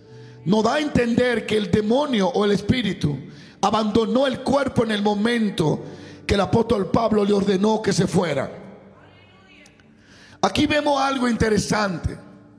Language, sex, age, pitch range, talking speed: Portuguese, male, 50-69, 195-245 Hz, 140 wpm